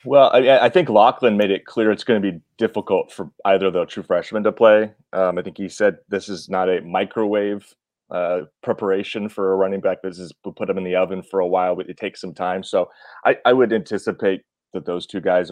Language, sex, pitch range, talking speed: English, male, 90-110 Hz, 235 wpm